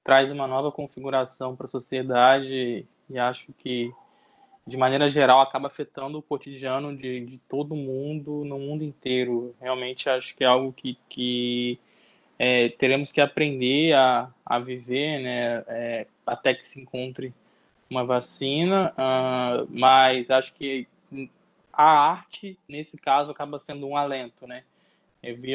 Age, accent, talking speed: 20-39, Brazilian, 145 wpm